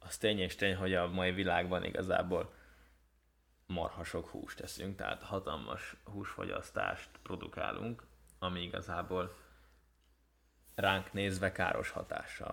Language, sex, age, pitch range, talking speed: Hungarian, male, 20-39, 90-110 Hz, 105 wpm